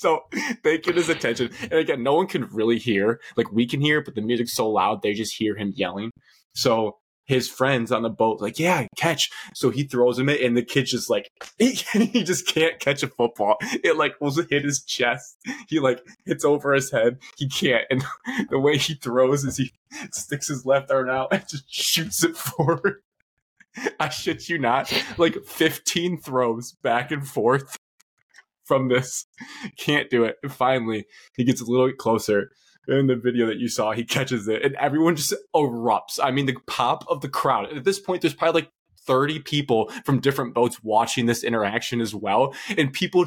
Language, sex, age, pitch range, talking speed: English, male, 20-39, 120-165 Hz, 200 wpm